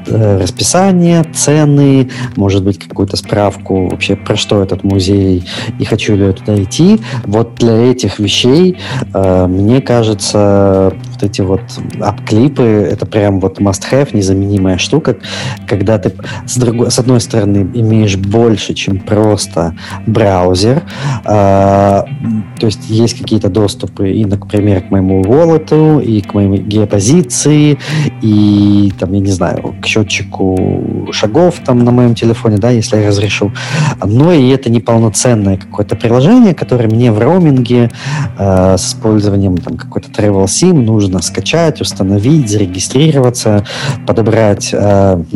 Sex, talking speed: male, 125 wpm